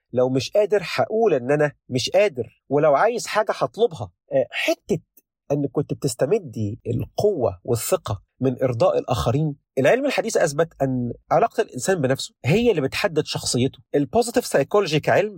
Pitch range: 130-200 Hz